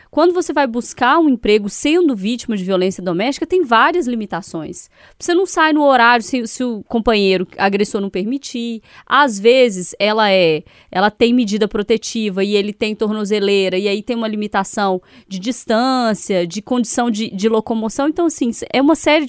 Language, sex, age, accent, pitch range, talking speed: Portuguese, female, 20-39, Brazilian, 200-260 Hz, 170 wpm